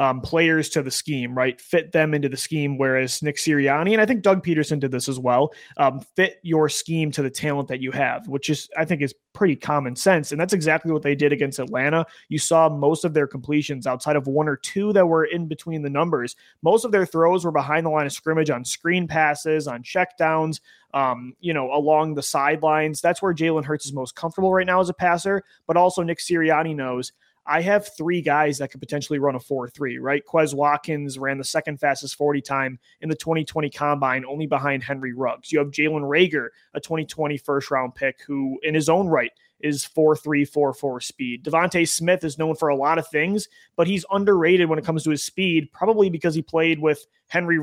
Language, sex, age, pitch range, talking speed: English, male, 20-39, 140-165 Hz, 215 wpm